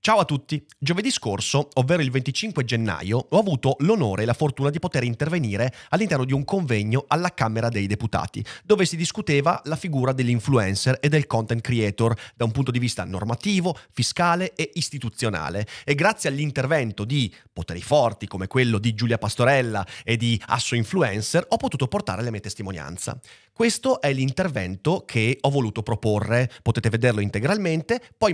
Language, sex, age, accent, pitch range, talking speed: Italian, male, 30-49, native, 110-145 Hz, 165 wpm